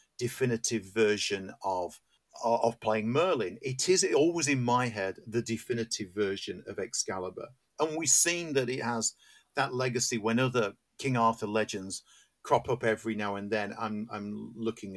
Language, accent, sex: English, British, male